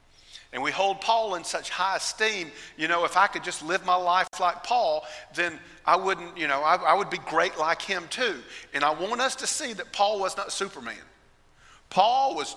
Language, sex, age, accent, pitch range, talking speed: English, male, 50-69, American, 170-215 Hz, 215 wpm